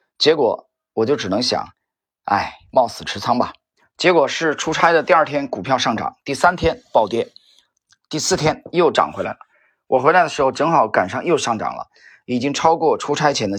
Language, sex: Chinese, male